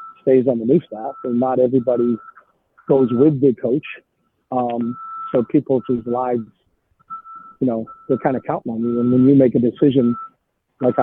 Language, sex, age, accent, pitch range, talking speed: English, male, 50-69, American, 125-165 Hz, 170 wpm